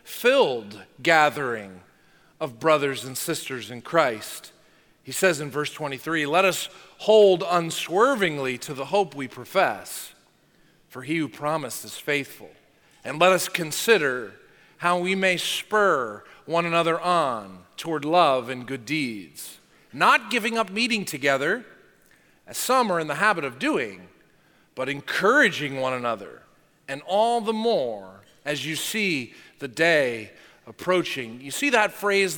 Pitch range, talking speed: 150-215 Hz, 140 wpm